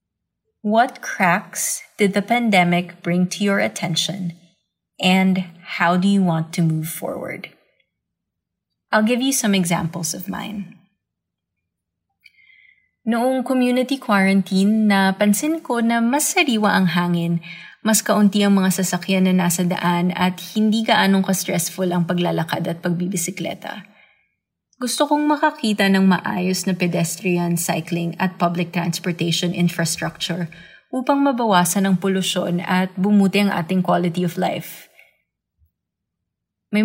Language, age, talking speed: English, 20-39, 120 wpm